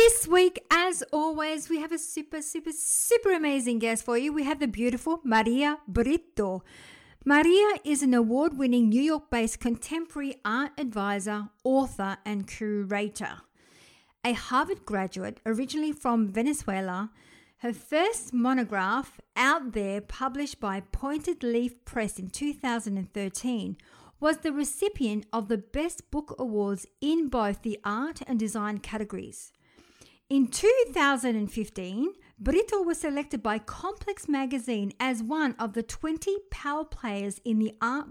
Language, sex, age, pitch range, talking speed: English, female, 50-69, 220-295 Hz, 130 wpm